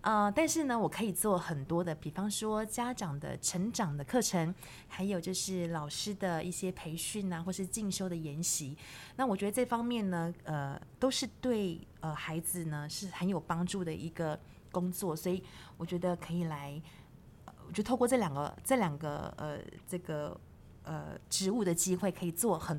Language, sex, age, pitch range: Chinese, female, 20-39, 165-210 Hz